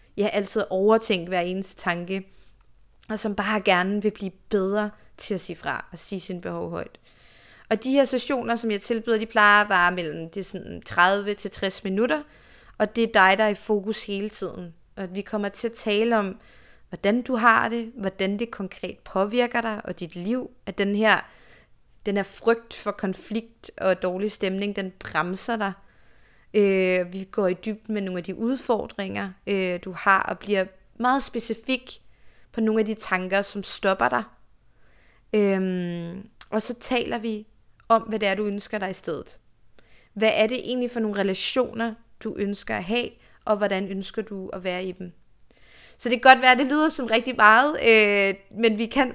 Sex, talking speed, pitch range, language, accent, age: female, 185 wpm, 190-225 Hz, Danish, native, 30-49